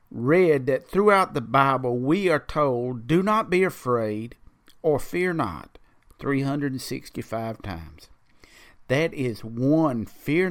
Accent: American